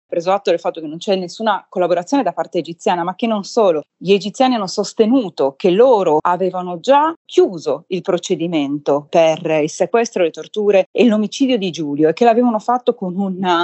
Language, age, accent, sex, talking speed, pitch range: Italian, 30-49, native, female, 185 wpm, 170-235 Hz